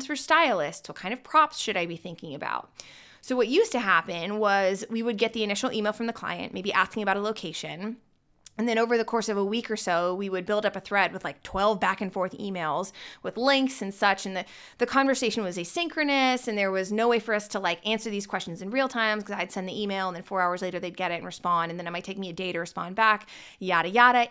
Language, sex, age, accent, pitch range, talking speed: English, female, 20-39, American, 185-240 Hz, 265 wpm